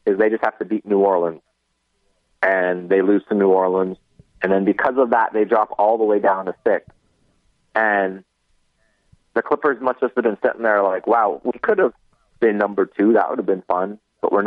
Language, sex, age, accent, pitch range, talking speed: English, male, 30-49, American, 100-125 Hz, 210 wpm